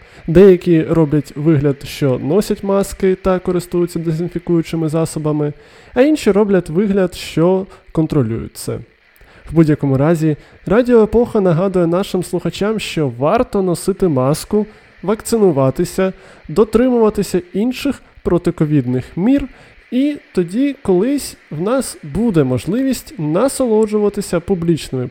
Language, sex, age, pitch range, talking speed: Ukrainian, male, 20-39, 155-220 Hz, 100 wpm